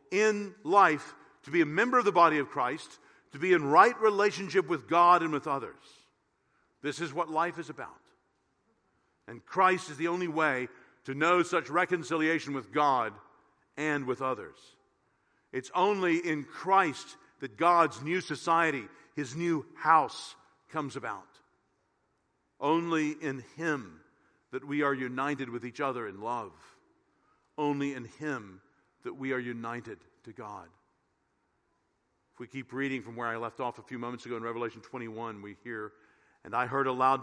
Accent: American